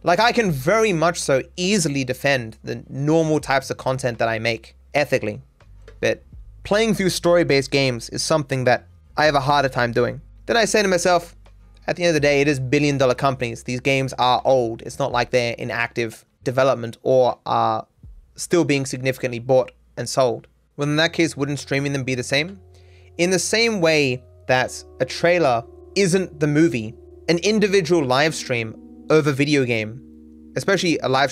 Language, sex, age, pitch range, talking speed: English, male, 20-39, 120-160 Hz, 185 wpm